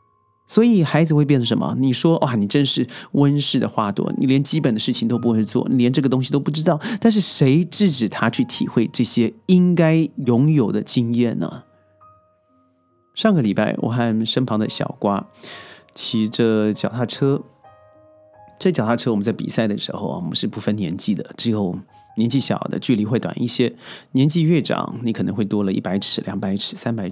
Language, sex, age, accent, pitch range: Chinese, male, 30-49, native, 105-140 Hz